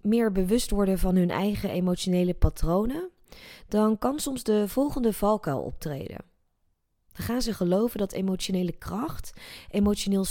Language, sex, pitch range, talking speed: Dutch, female, 175-215 Hz, 135 wpm